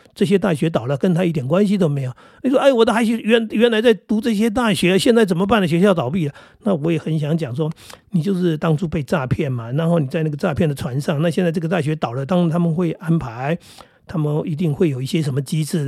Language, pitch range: Chinese, 145-190 Hz